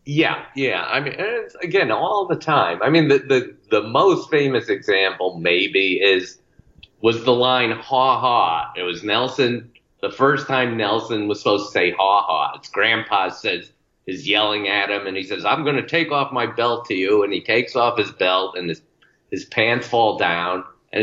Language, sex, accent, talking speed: English, male, American, 195 wpm